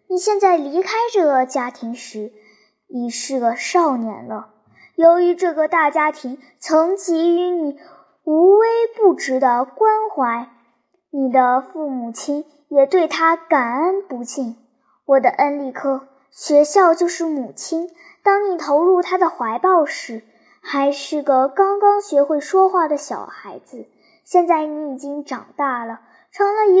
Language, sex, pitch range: Chinese, male, 260-355 Hz